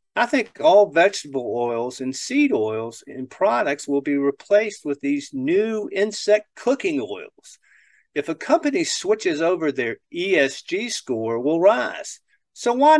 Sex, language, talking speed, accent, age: male, English, 145 wpm, American, 50-69